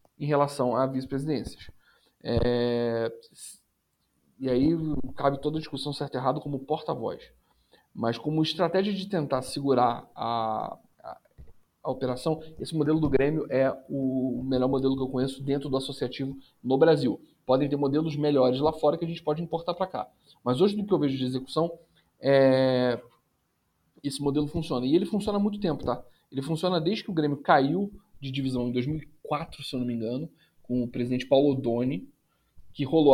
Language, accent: Portuguese, Brazilian